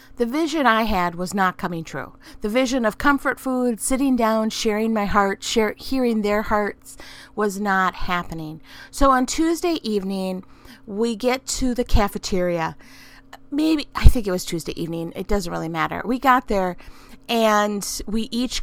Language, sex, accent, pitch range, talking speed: English, female, American, 190-245 Hz, 160 wpm